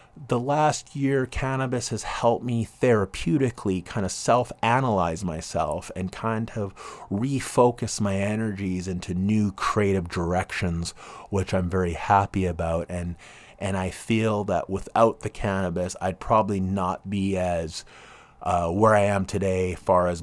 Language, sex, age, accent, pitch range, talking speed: English, male, 30-49, American, 90-110 Hz, 140 wpm